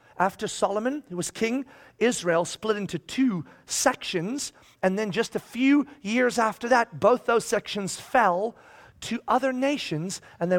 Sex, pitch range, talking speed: male, 140-225 Hz, 155 wpm